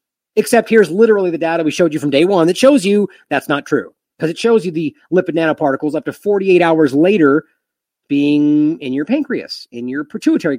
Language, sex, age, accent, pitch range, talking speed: English, male, 30-49, American, 165-240 Hz, 205 wpm